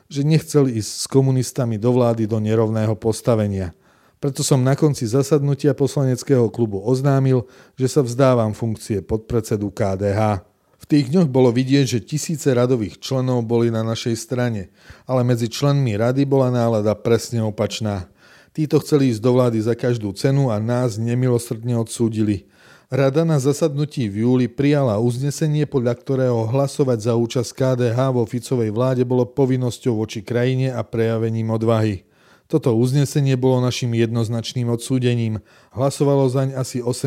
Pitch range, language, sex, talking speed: 115-135 Hz, Slovak, male, 145 wpm